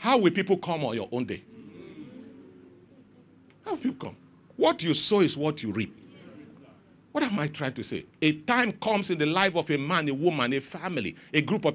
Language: English